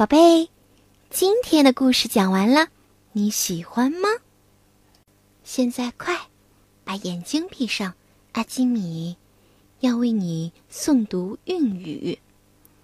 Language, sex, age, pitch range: Chinese, female, 20-39, 165-270 Hz